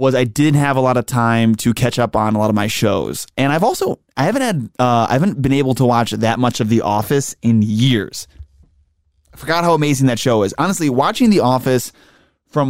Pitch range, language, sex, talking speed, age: 110-140 Hz, English, male, 230 wpm, 20-39